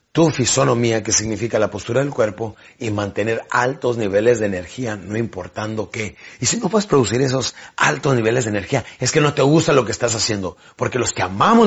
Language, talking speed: Spanish, 205 wpm